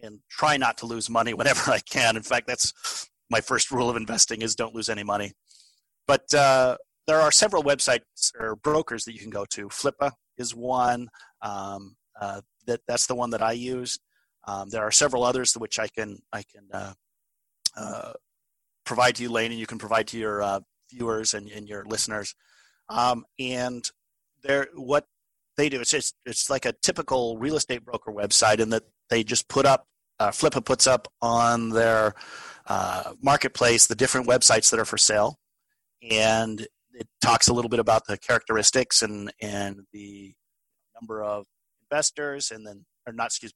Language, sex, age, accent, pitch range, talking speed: English, male, 40-59, American, 110-130 Hz, 180 wpm